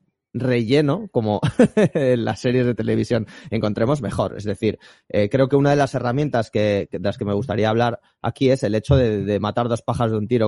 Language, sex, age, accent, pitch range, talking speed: Spanish, male, 20-39, Spanish, 105-140 Hz, 210 wpm